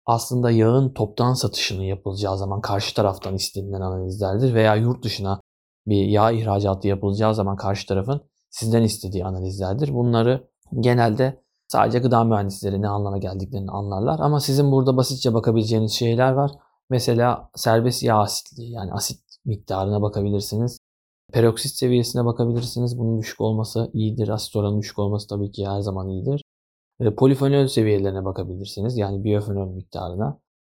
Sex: male